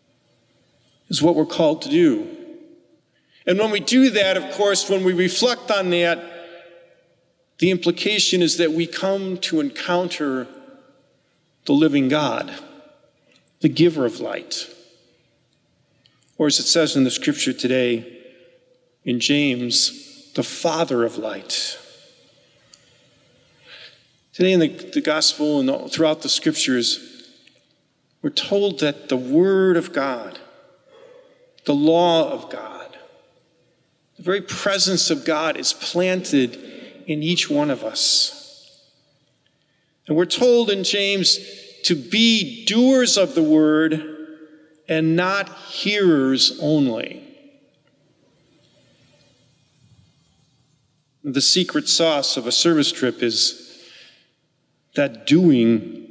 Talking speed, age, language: 110 wpm, 50-69, English